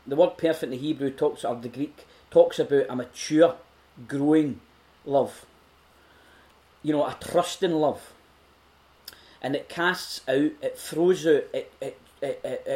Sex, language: male, English